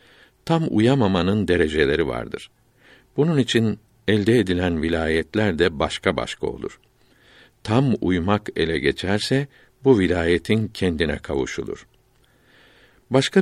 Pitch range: 85-115 Hz